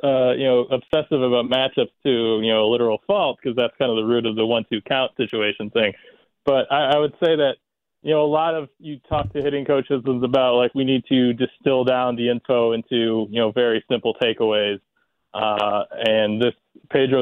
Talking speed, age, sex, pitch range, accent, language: 205 wpm, 20-39, male, 110-135 Hz, American, English